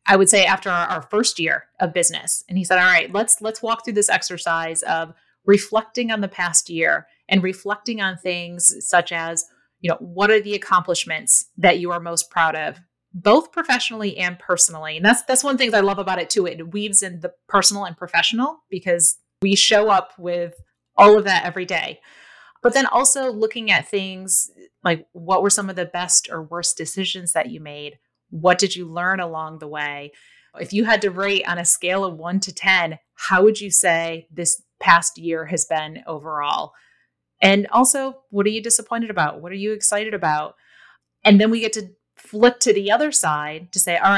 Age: 30-49